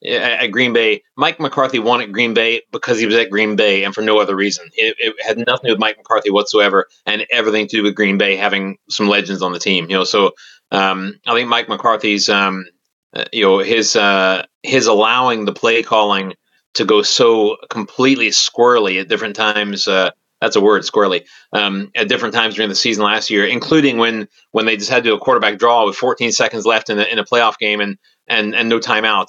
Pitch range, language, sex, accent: 100-120 Hz, English, male, American